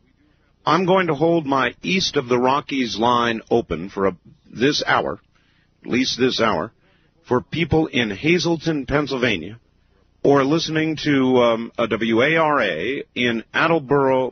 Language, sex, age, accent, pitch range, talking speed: English, male, 50-69, American, 115-155 Hz, 135 wpm